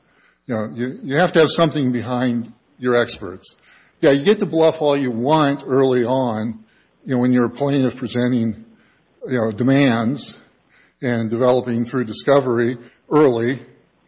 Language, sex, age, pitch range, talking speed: English, male, 50-69, 120-140 Hz, 155 wpm